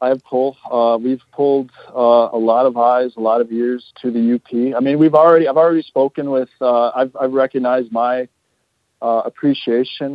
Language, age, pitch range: English, 40-59, 120-140 Hz